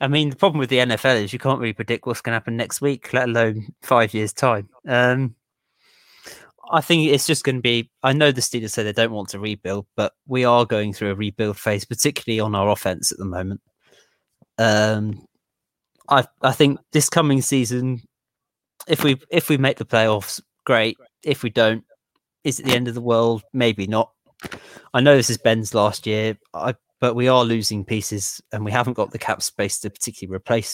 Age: 20-39